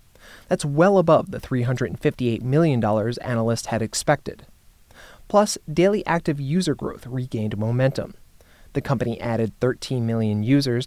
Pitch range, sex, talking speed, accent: 115-145 Hz, male, 120 wpm, American